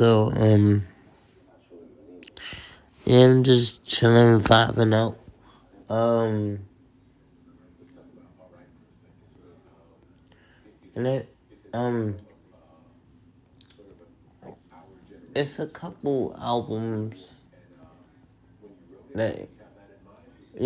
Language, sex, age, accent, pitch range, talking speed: English, male, 20-39, American, 105-130 Hz, 55 wpm